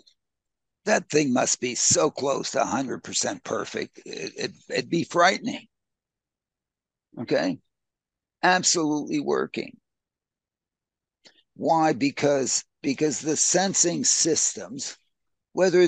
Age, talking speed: 60-79, 100 wpm